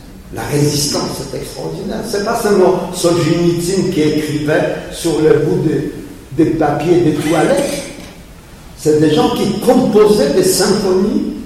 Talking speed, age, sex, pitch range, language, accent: 135 wpm, 50-69, male, 140-190 Hz, French, French